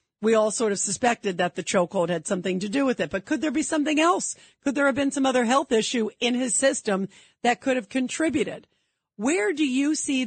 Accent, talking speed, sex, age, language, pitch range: American, 230 wpm, female, 50-69, English, 200-255 Hz